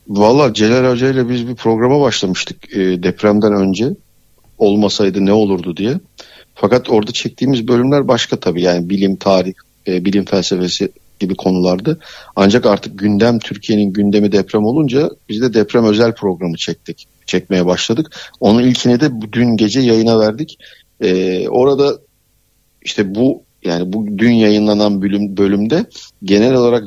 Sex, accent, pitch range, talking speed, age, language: male, native, 100-125 Hz, 140 wpm, 50-69, Turkish